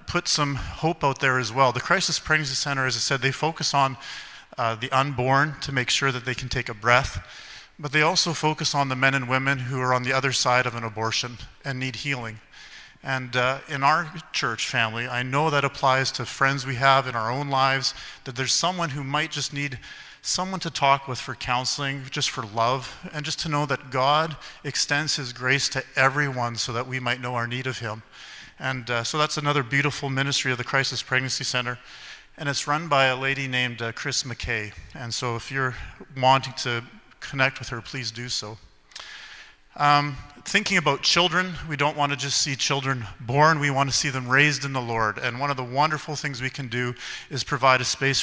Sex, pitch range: male, 125-145 Hz